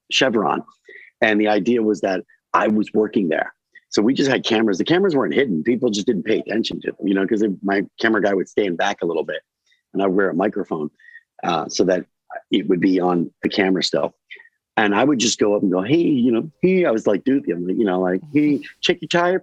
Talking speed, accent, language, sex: 240 wpm, American, English, male